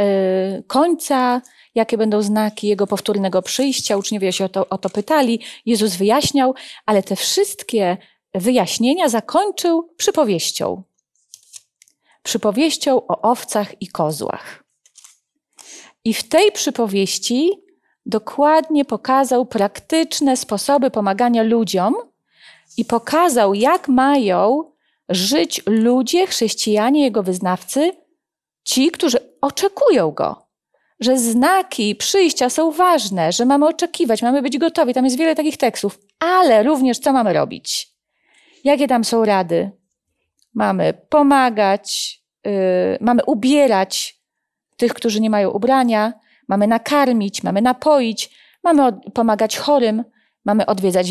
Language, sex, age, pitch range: Polish, female, 30-49, 210-290 Hz